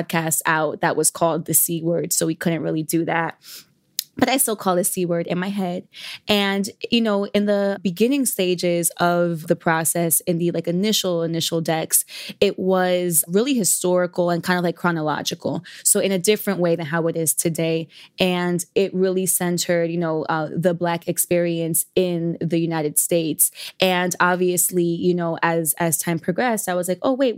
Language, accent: English, American